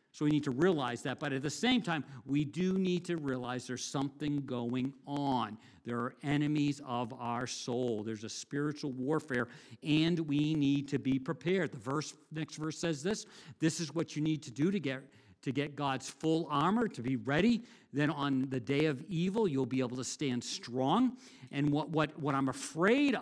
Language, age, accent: English, 50-69, American